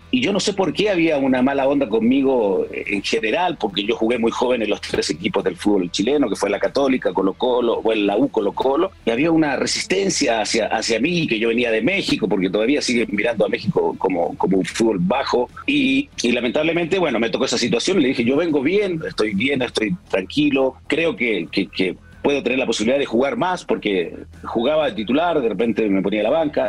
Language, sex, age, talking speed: English, male, 40-59, 220 wpm